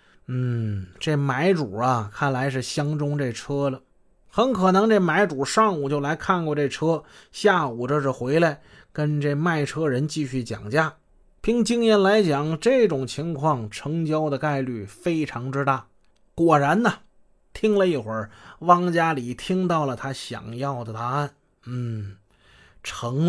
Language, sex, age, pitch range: Chinese, male, 30-49, 130-180 Hz